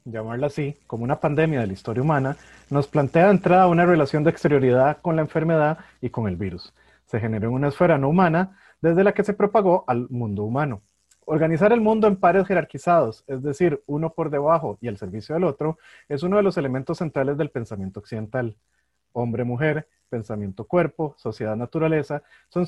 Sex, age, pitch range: male, 30-49, 125-175 Hz